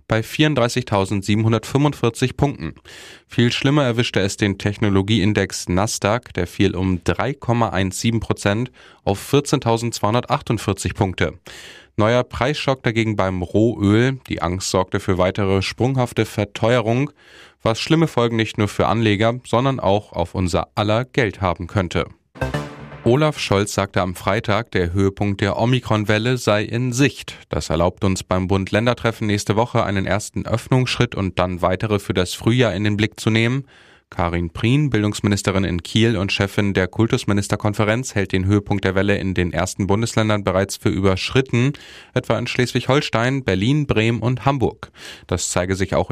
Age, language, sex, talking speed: 10-29, German, male, 140 wpm